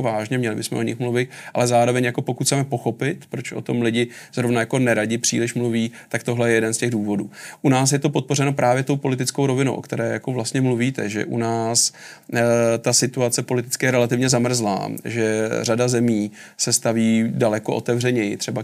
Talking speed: 195 wpm